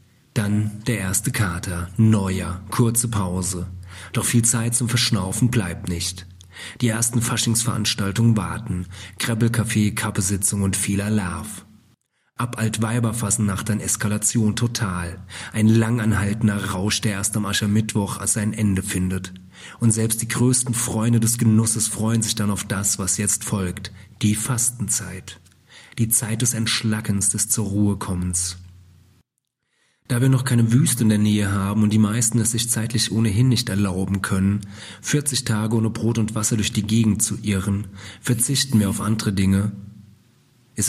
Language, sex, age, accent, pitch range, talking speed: German, male, 40-59, German, 95-115 Hz, 145 wpm